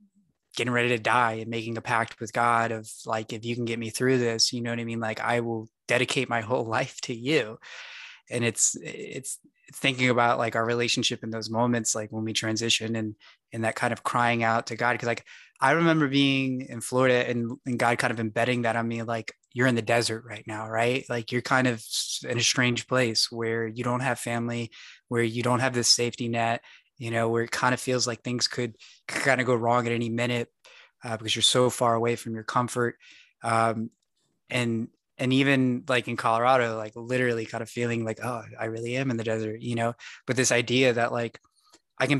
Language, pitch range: English, 115-125 Hz